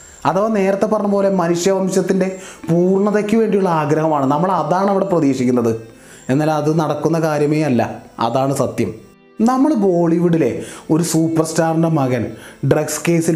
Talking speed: 110 wpm